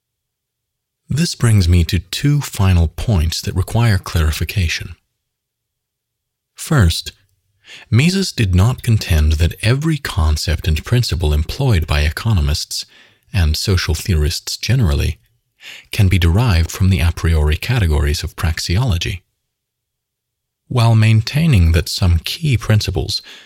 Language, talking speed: English, 110 wpm